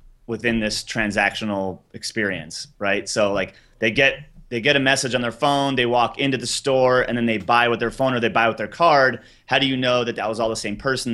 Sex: male